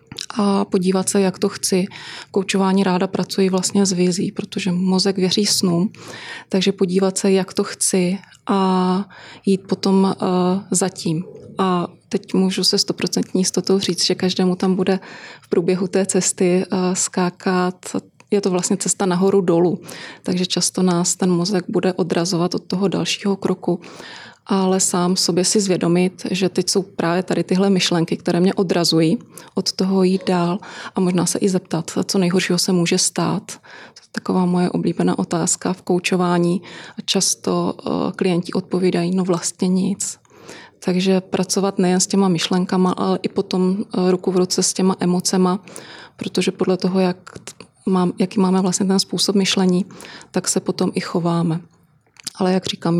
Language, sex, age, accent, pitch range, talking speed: Czech, female, 20-39, native, 180-195 Hz, 155 wpm